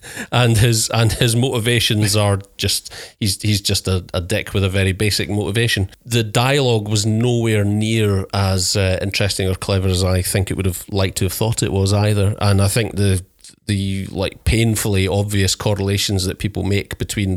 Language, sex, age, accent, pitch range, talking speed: English, male, 30-49, British, 95-110 Hz, 190 wpm